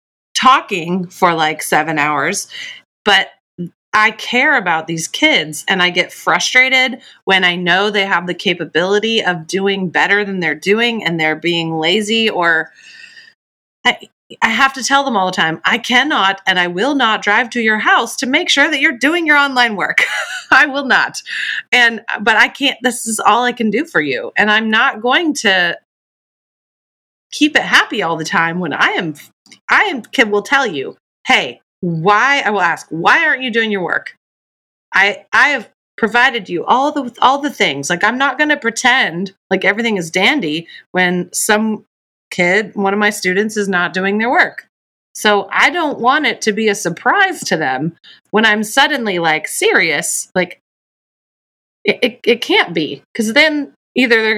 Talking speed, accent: 180 wpm, American